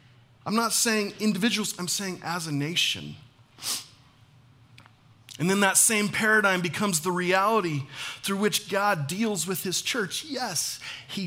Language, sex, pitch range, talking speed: English, male, 125-150 Hz, 140 wpm